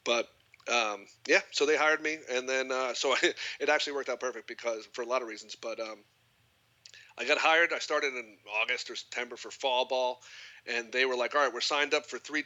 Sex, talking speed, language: male, 230 wpm, English